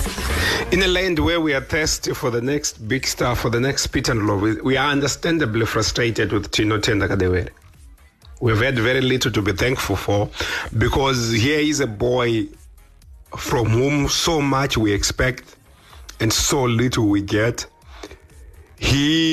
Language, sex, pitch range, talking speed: English, male, 100-135 Hz, 150 wpm